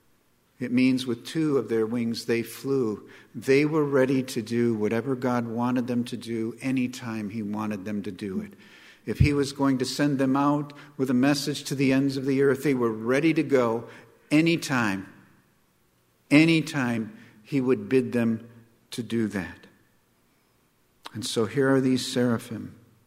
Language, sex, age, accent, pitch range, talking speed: English, male, 50-69, American, 125-160 Hz, 170 wpm